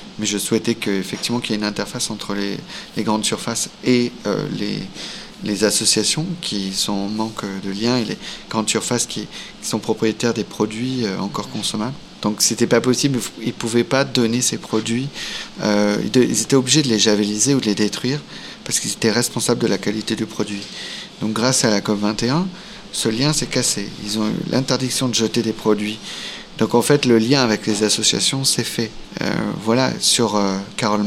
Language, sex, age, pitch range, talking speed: French, male, 30-49, 105-125 Hz, 195 wpm